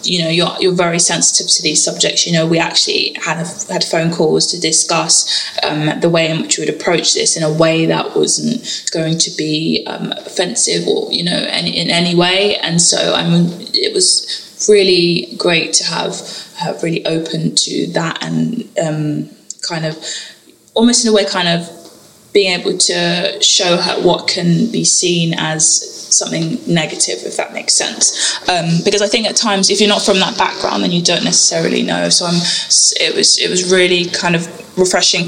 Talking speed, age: 195 wpm, 20-39